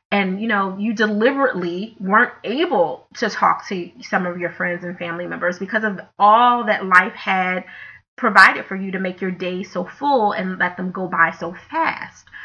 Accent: American